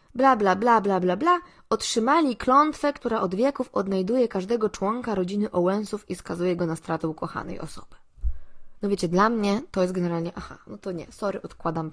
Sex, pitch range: female, 180-235 Hz